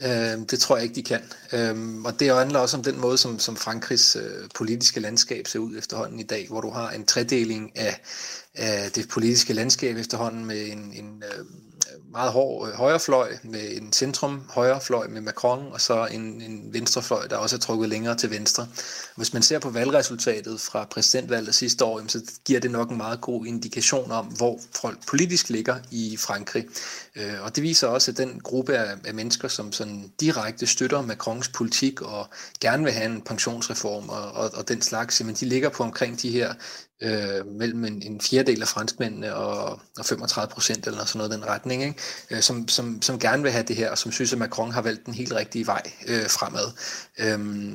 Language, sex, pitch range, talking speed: Danish, male, 110-125 Hz, 190 wpm